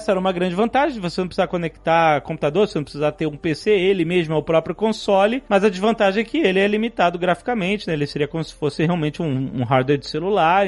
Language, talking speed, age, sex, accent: Portuguese, 240 wpm, 30-49, male, Brazilian